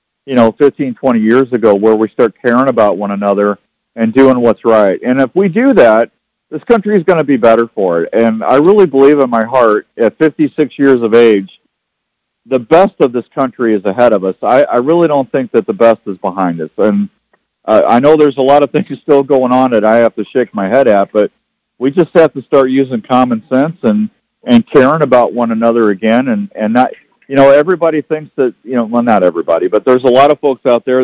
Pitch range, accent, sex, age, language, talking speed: 115-150 Hz, American, male, 50-69, English, 230 wpm